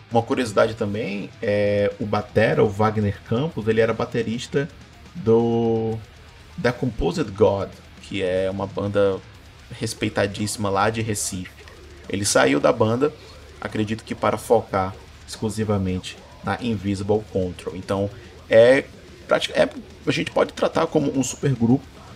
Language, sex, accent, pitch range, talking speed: Portuguese, male, Brazilian, 100-125 Hz, 125 wpm